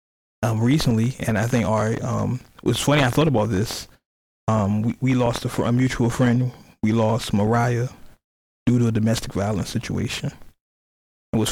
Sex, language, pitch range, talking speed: male, English, 105-125 Hz, 165 wpm